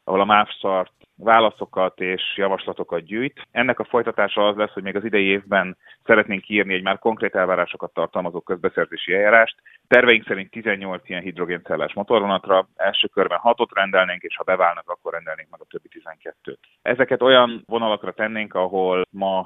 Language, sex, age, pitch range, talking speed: Hungarian, male, 30-49, 90-105 Hz, 155 wpm